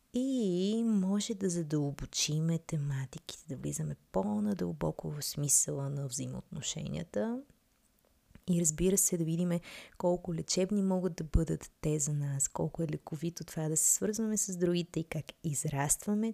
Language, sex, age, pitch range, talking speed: Bulgarian, female, 20-39, 150-200 Hz, 140 wpm